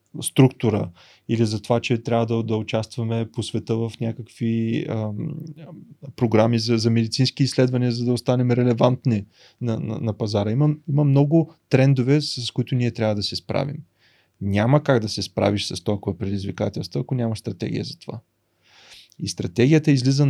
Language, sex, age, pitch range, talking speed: Bulgarian, male, 30-49, 110-135 Hz, 160 wpm